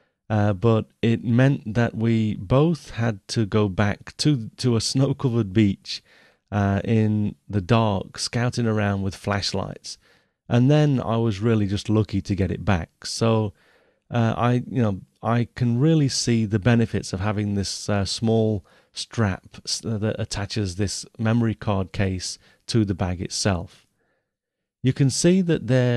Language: English